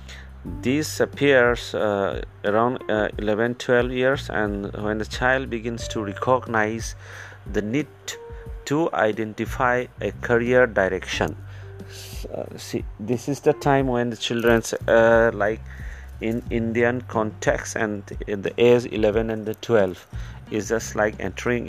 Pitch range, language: 95-115 Hz, English